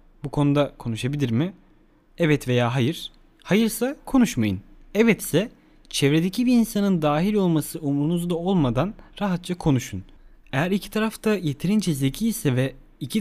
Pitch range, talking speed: 130-170 Hz, 125 wpm